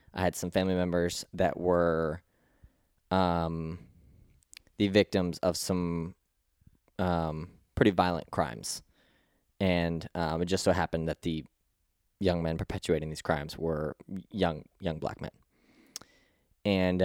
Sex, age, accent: male, 20-39, American